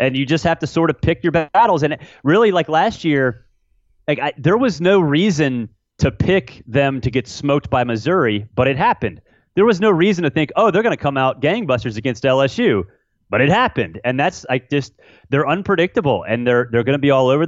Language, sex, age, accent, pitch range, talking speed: English, male, 30-49, American, 115-155 Hz, 215 wpm